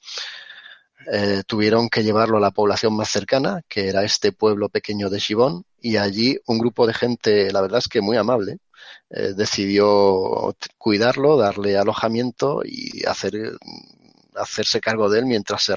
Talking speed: 155 wpm